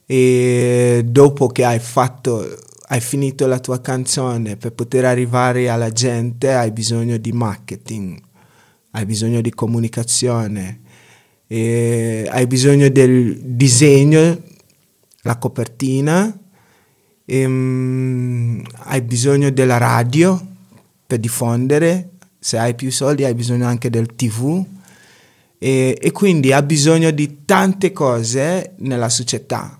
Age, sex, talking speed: 30-49, male, 115 wpm